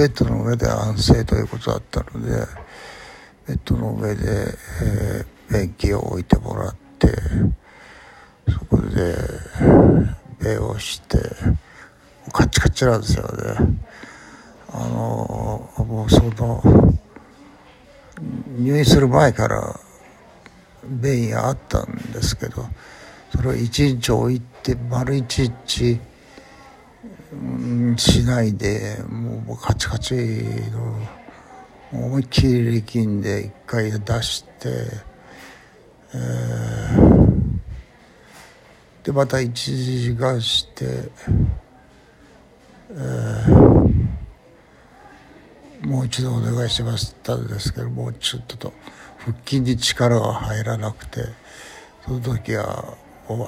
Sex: male